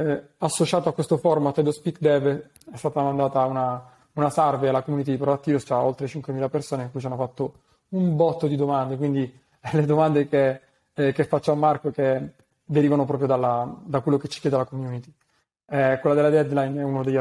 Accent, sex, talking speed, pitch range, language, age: native, male, 210 wpm, 135-155 Hz, Italian, 30-49